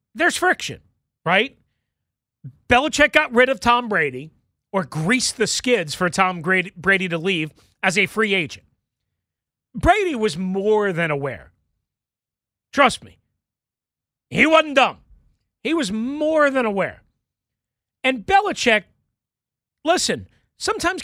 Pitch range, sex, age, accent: 190-270 Hz, male, 40-59, American